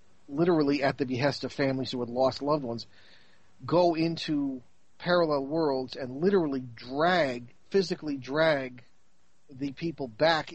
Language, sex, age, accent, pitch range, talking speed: English, male, 40-59, American, 120-150 Hz, 130 wpm